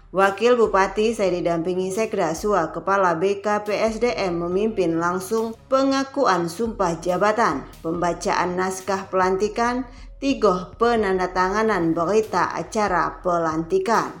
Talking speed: 90 wpm